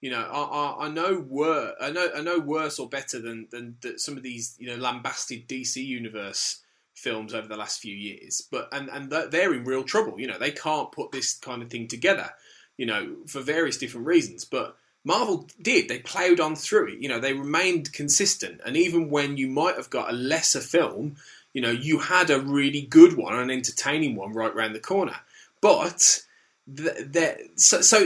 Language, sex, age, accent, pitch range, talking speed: English, male, 20-39, British, 125-175 Hz, 210 wpm